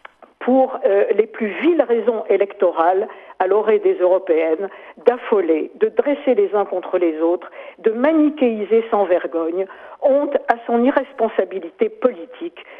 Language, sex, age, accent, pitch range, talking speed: French, female, 50-69, French, 195-290 Hz, 130 wpm